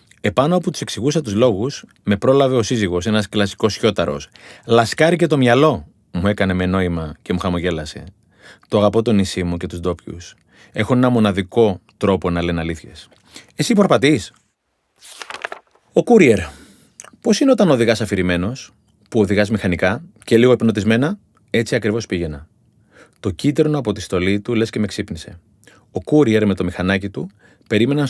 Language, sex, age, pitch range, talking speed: Greek, male, 30-49, 100-145 Hz, 155 wpm